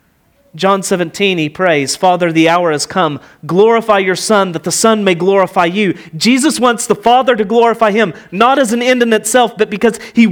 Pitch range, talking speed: 165-230 Hz, 200 wpm